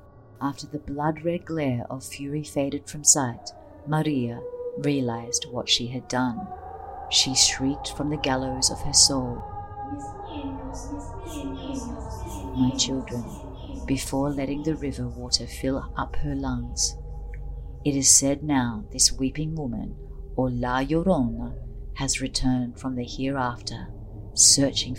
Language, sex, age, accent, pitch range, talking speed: English, female, 50-69, Australian, 115-140 Hz, 120 wpm